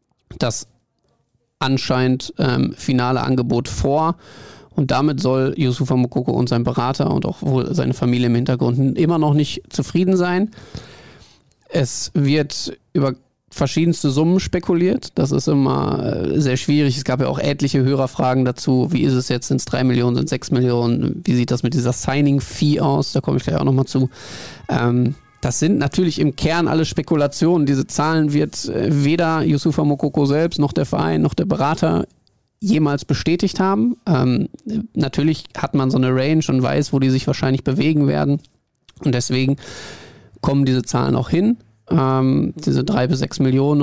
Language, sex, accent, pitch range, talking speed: German, male, German, 130-150 Hz, 170 wpm